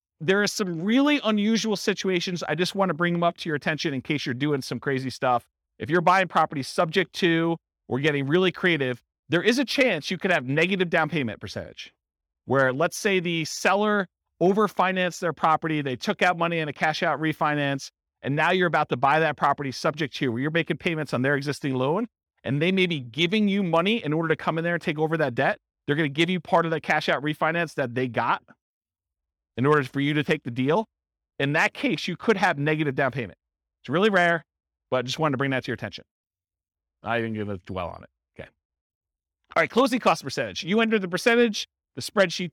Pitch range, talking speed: 130-185 Hz, 225 wpm